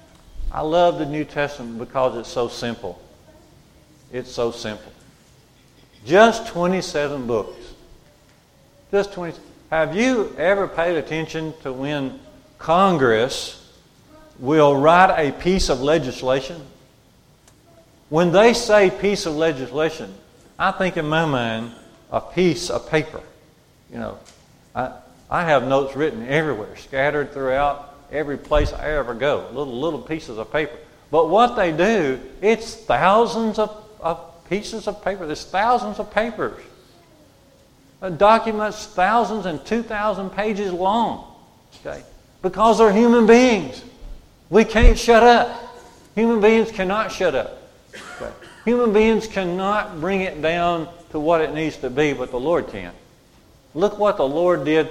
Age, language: 50-69, English